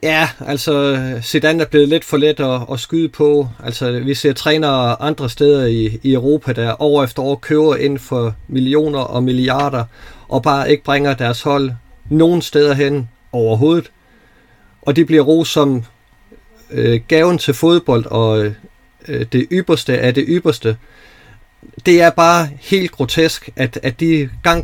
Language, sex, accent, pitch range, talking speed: Danish, male, native, 120-155 Hz, 160 wpm